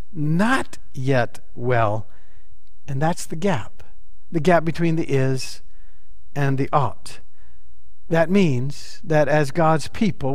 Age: 50-69